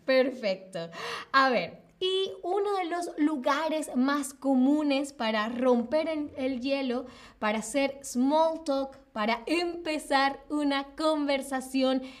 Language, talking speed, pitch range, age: Spanish, 110 wpm, 245-290 Hz, 20-39